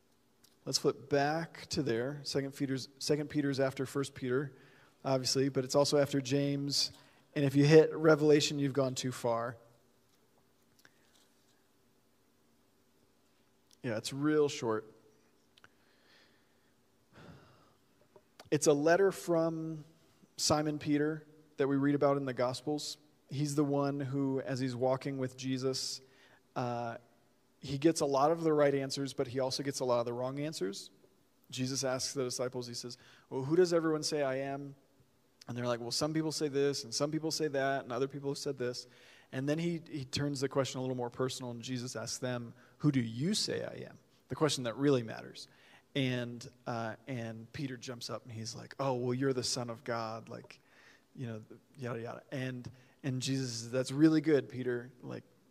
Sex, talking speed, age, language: male, 175 wpm, 40-59, English